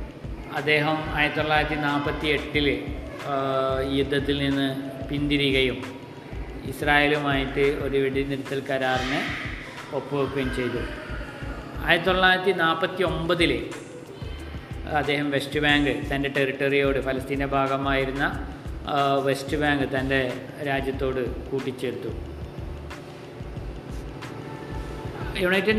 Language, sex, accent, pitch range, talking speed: Malayalam, male, native, 135-155 Hz, 70 wpm